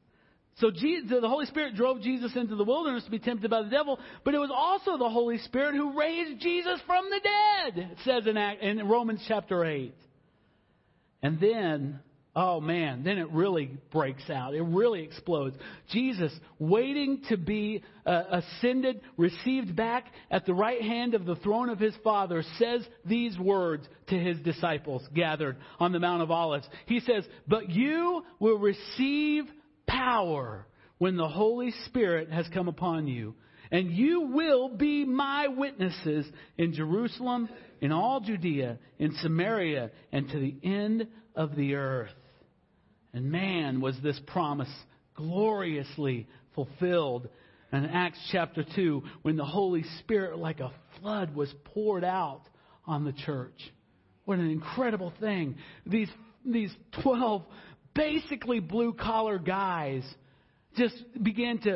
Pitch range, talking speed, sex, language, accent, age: 155-235 Hz, 145 wpm, male, English, American, 50-69